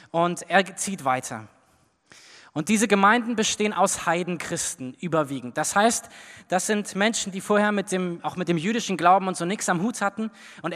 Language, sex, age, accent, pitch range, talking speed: German, male, 20-39, German, 175-220 Hz, 180 wpm